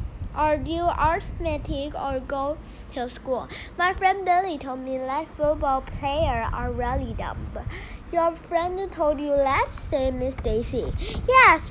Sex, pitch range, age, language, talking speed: female, 260-330 Hz, 10-29, English, 140 wpm